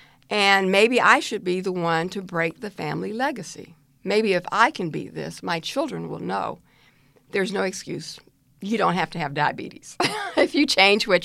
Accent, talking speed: American, 185 wpm